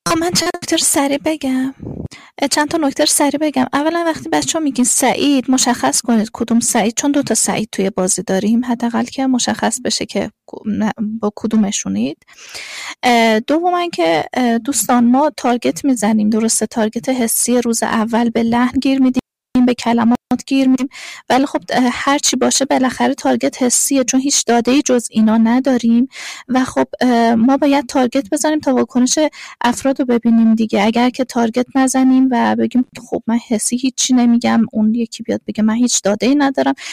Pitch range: 230-275 Hz